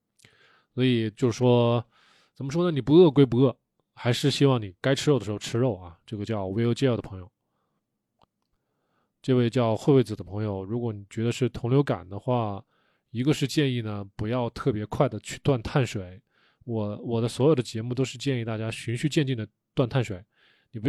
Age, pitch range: 20-39, 110-150 Hz